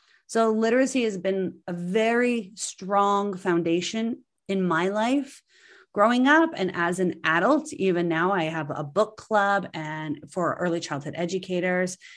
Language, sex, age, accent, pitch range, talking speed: English, female, 30-49, American, 175-260 Hz, 145 wpm